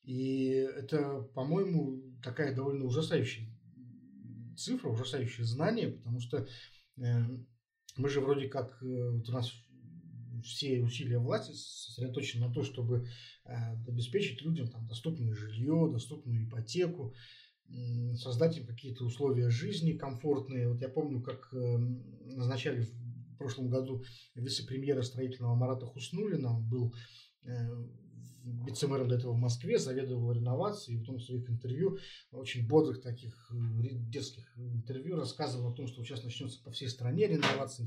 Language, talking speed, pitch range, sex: Russian, 135 wpm, 120-140 Hz, male